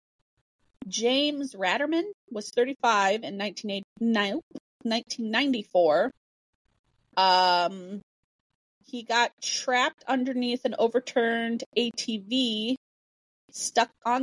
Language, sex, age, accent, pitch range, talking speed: English, female, 30-49, American, 205-265 Hz, 75 wpm